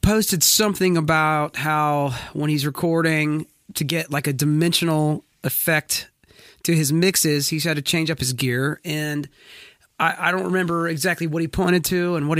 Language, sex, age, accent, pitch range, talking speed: English, male, 30-49, American, 145-185 Hz, 170 wpm